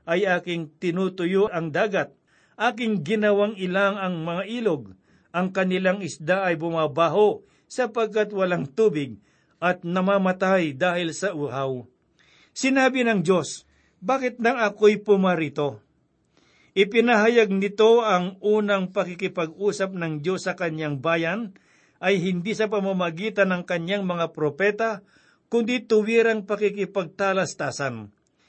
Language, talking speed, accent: Filipino, 105 wpm, native